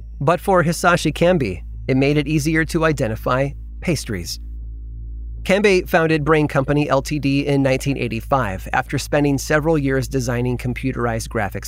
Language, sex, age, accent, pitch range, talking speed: English, male, 30-49, American, 110-155 Hz, 130 wpm